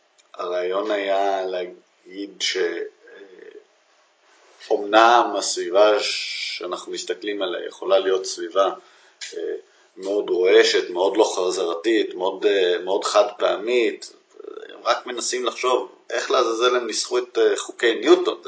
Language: English